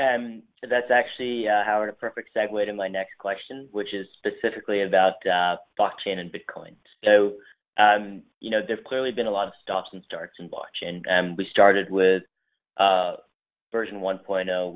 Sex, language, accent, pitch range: male, English, American, 90-105 Hz